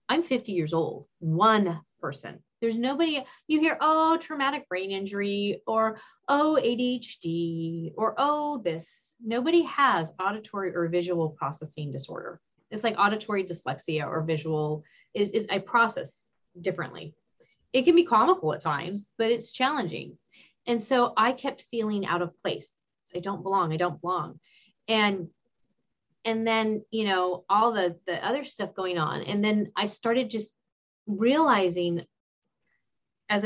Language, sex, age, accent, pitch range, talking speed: English, female, 30-49, American, 175-235 Hz, 145 wpm